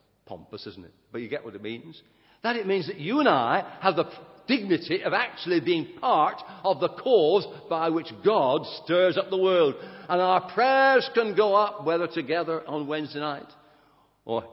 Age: 50-69